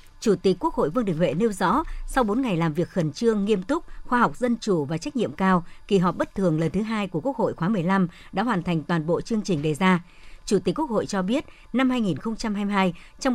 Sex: male